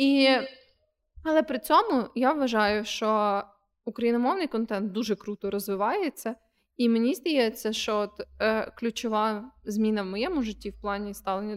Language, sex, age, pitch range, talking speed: Ukrainian, female, 20-39, 200-240 Hz, 135 wpm